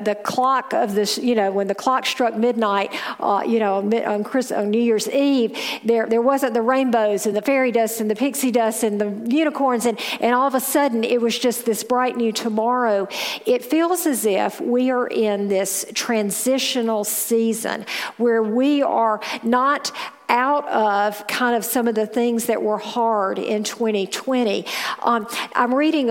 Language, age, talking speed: English, 50-69, 180 wpm